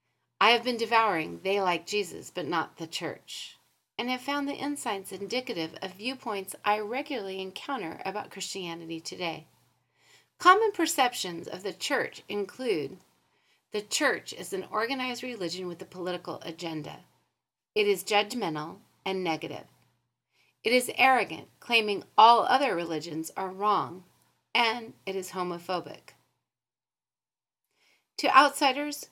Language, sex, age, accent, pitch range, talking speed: English, female, 40-59, American, 185-275 Hz, 125 wpm